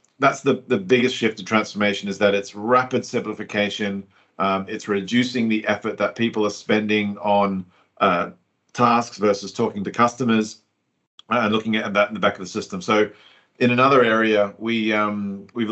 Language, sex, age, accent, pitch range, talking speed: English, male, 40-59, Australian, 105-120 Hz, 170 wpm